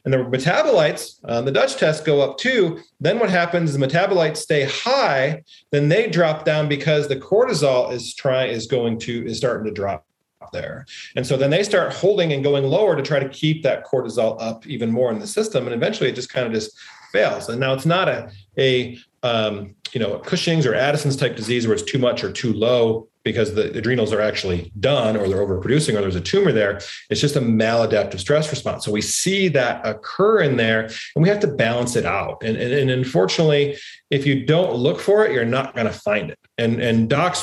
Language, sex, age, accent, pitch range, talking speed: English, male, 40-59, American, 115-150 Hz, 225 wpm